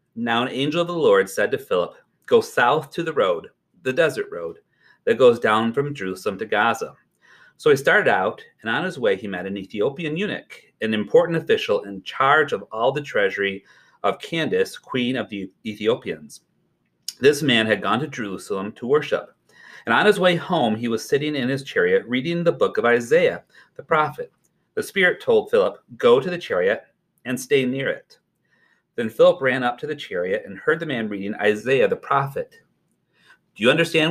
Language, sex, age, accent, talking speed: English, male, 40-59, American, 190 wpm